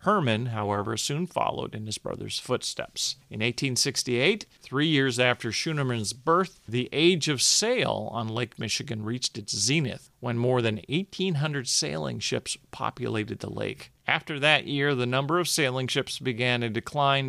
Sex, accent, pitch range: male, American, 120-150 Hz